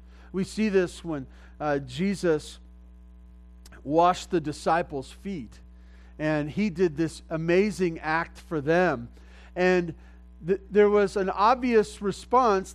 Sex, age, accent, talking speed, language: male, 40-59, American, 115 wpm, English